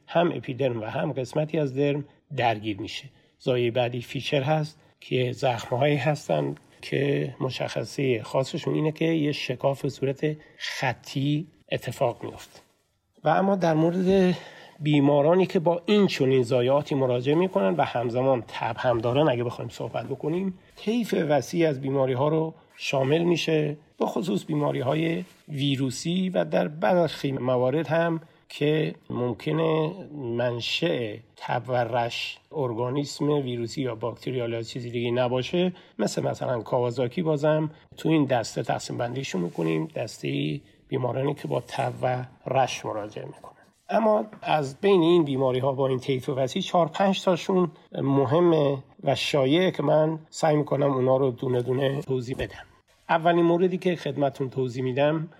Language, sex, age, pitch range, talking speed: Persian, male, 50-69, 130-165 Hz, 140 wpm